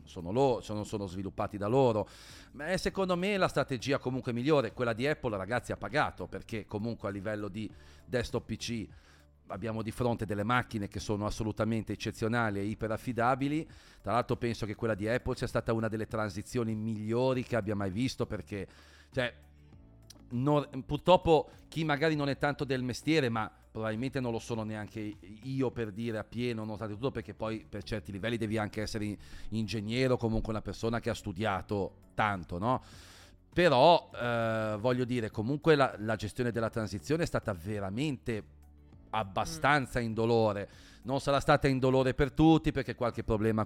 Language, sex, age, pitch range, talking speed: Italian, male, 40-59, 105-125 Hz, 165 wpm